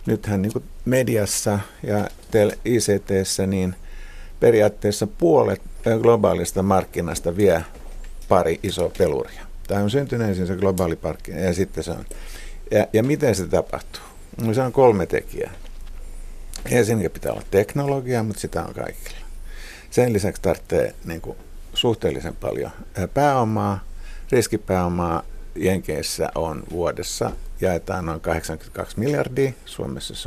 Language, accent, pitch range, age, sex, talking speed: Finnish, native, 85-115 Hz, 50-69, male, 120 wpm